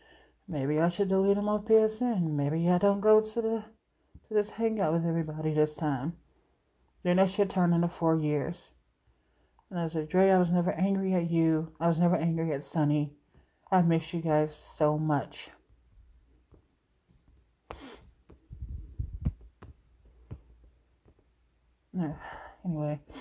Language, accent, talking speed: English, American, 130 wpm